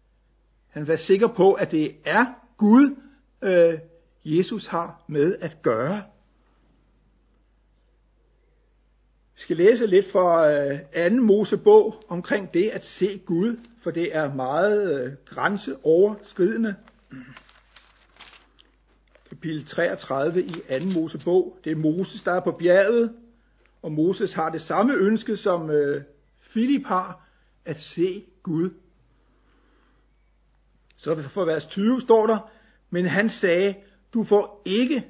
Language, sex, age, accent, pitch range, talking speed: Danish, male, 60-79, native, 155-210 Hz, 115 wpm